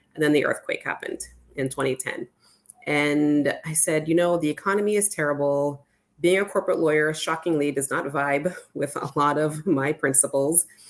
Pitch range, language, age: 135-160 Hz, English, 20-39